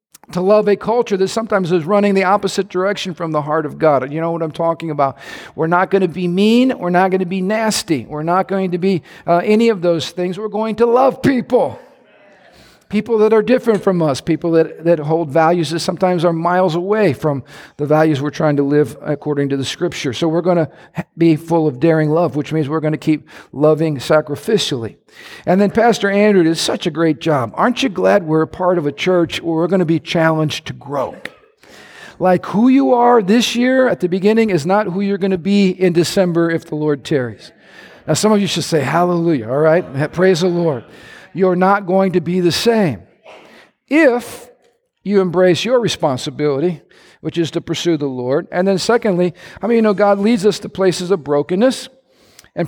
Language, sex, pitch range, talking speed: English, male, 165-205 Hz, 210 wpm